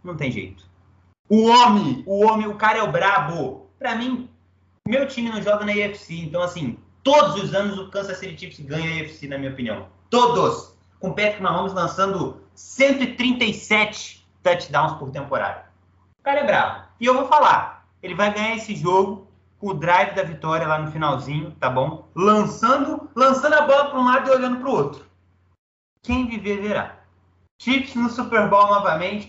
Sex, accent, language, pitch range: male, Brazilian, Portuguese, 165-250 Hz